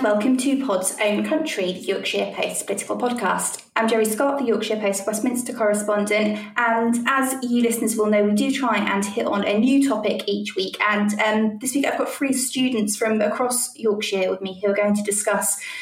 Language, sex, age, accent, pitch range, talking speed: English, female, 20-39, British, 200-250 Hz, 200 wpm